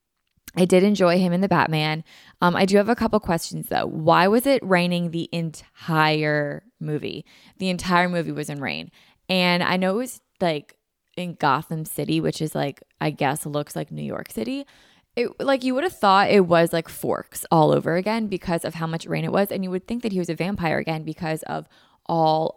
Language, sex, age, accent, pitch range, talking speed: English, female, 20-39, American, 155-195 Hz, 215 wpm